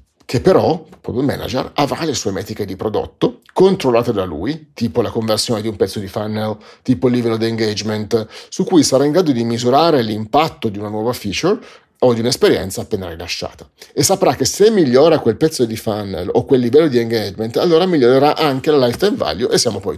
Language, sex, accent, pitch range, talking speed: Italian, male, native, 115-155 Hz, 200 wpm